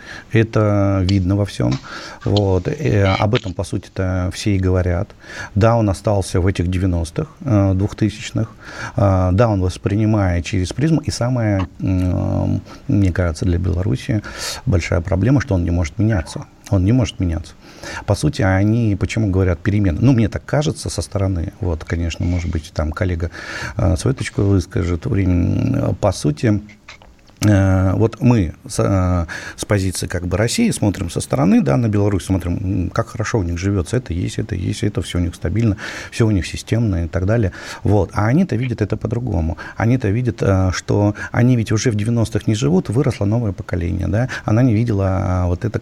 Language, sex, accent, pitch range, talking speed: Russian, male, native, 95-115 Hz, 165 wpm